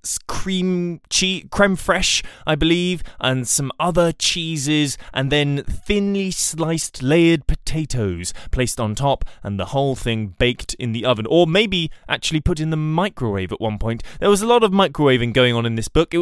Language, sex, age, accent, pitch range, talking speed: English, male, 20-39, British, 120-165 Hz, 180 wpm